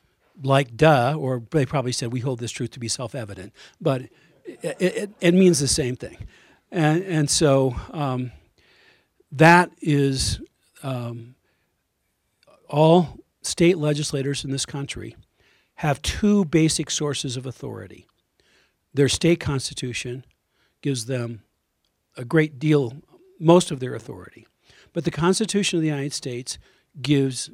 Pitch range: 130-165 Hz